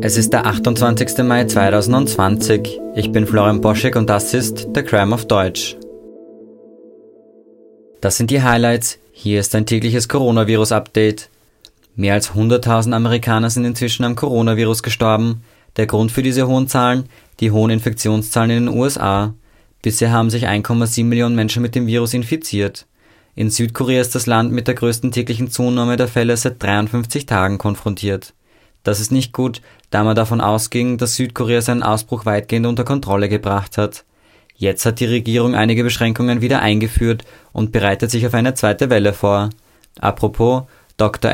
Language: English